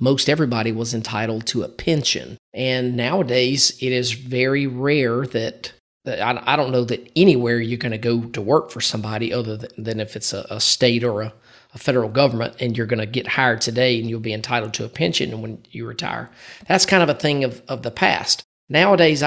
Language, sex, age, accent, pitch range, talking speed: English, male, 40-59, American, 120-140 Hz, 195 wpm